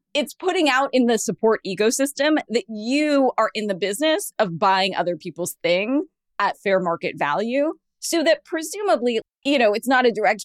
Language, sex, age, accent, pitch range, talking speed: English, female, 20-39, American, 190-270 Hz, 180 wpm